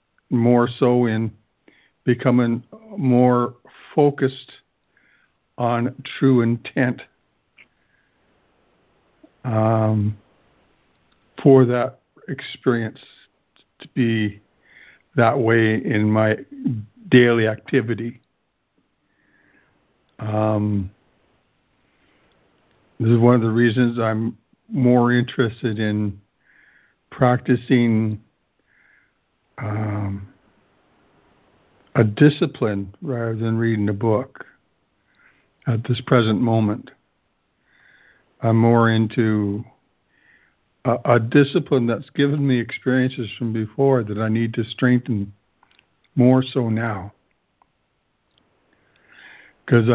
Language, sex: English, male